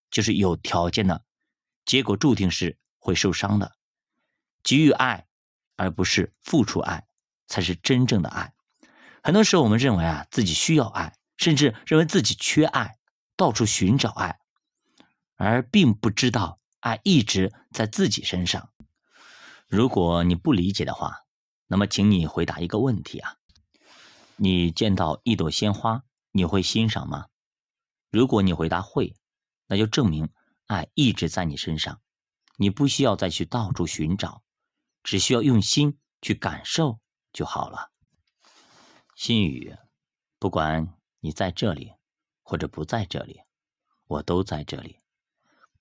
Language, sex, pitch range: Chinese, male, 85-120 Hz